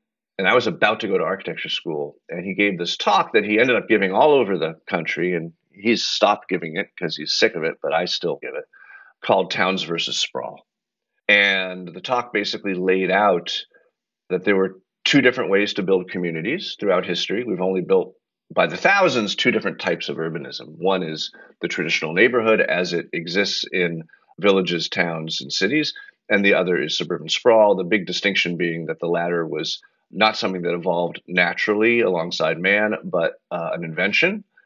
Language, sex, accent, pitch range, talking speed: English, male, American, 85-110 Hz, 185 wpm